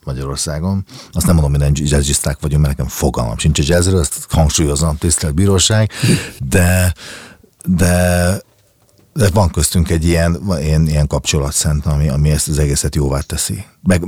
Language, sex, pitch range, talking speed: Hungarian, male, 75-100 Hz, 150 wpm